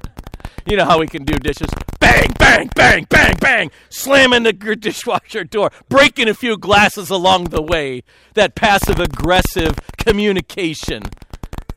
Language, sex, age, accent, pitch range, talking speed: English, male, 50-69, American, 155-230 Hz, 135 wpm